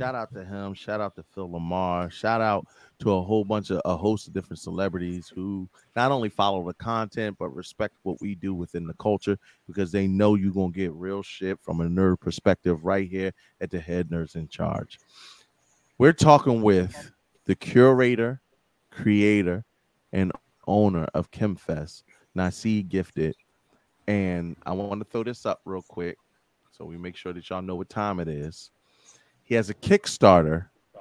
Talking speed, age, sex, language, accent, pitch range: 180 wpm, 30-49, male, English, American, 90-115 Hz